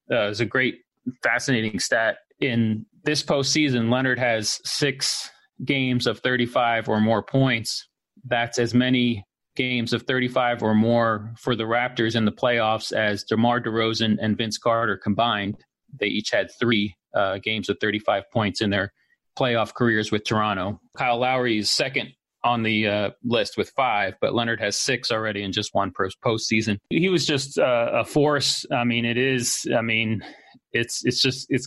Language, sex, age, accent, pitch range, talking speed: English, male, 30-49, American, 110-125 Hz, 165 wpm